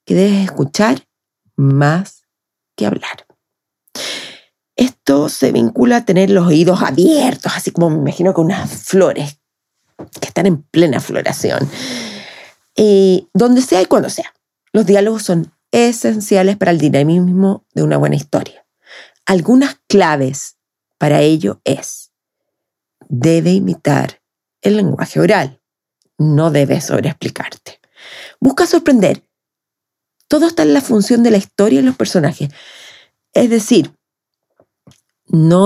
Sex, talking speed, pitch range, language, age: female, 120 wpm, 155-220 Hz, Spanish, 40-59